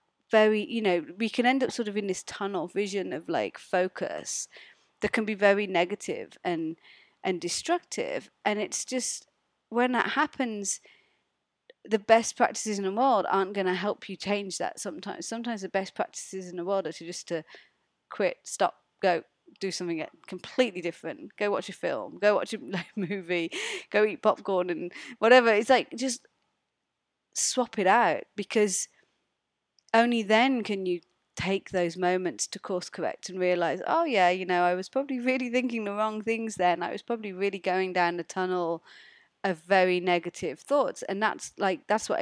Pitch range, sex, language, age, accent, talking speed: 180-225 Hz, female, English, 30-49, British, 175 wpm